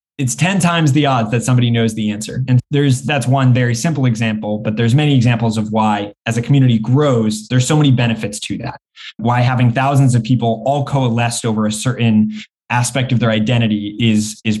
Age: 20-39